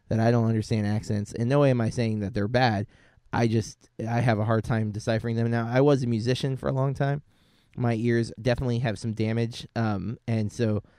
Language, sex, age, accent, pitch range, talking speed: English, male, 20-39, American, 105-125 Hz, 225 wpm